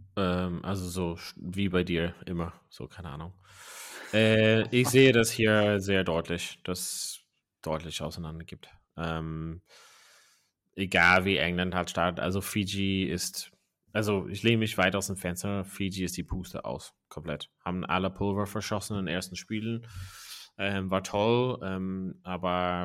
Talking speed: 150 wpm